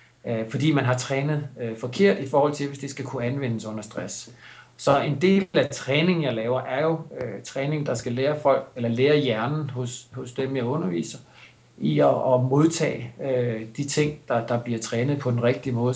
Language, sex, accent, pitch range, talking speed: Danish, male, native, 125-150 Hz, 190 wpm